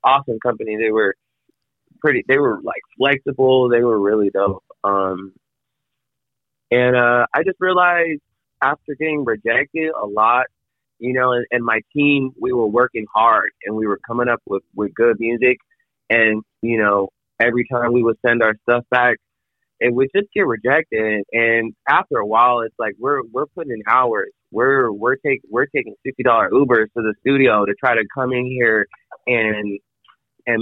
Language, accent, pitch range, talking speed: English, American, 110-130 Hz, 175 wpm